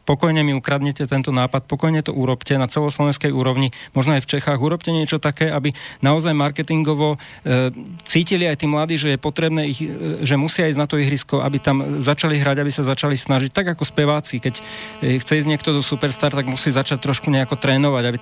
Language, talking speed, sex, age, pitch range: Slovak, 205 wpm, male, 40-59, 130-150 Hz